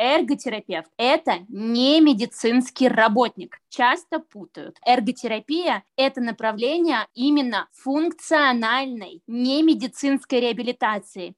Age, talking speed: 20-39, 80 wpm